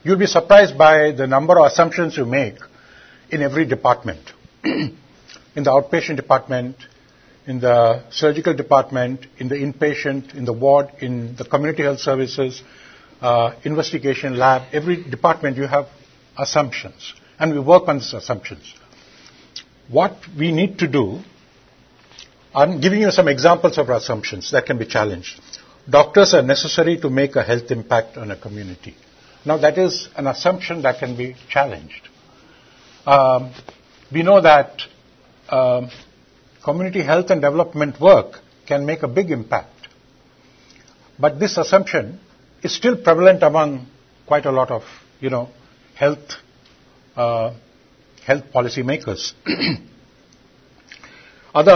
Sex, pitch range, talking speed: male, 125-165 Hz, 135 wpm